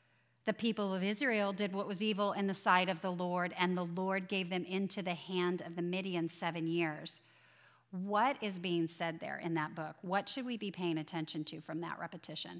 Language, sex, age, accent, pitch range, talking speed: English, female, 30-49, American, 155-195 Hz, 215 wpm